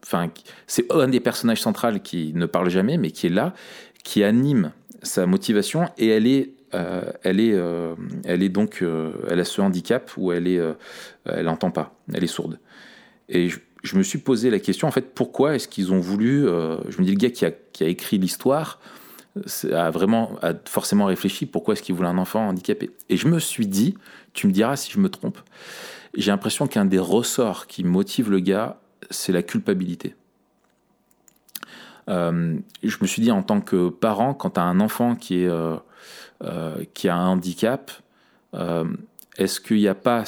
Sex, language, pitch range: male, French, 90-145 Hz